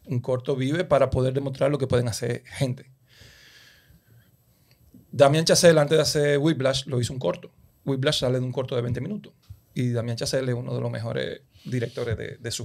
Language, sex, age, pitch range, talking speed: Spanish, male, 30-49, 130-155 Hz, 195 wpm